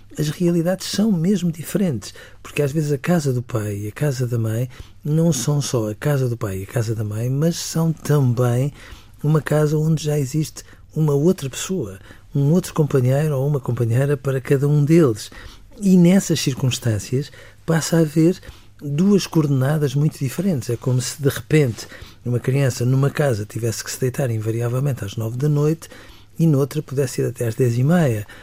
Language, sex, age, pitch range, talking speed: Portuguese, male, 50-69, 120-155 Hz, 185 wpm